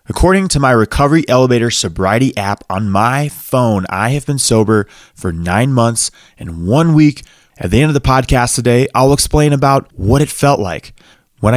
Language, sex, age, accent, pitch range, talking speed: English, male, 20-39, American, 110-150 Hz, 180 wpm